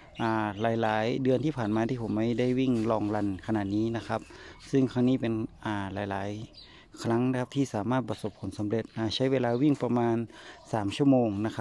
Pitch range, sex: 110-130 Hz, male